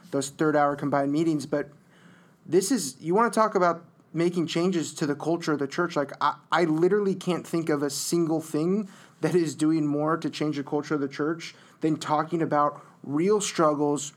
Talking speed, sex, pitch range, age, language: 200 wpm, male, 150-175 Hz, 20-39, English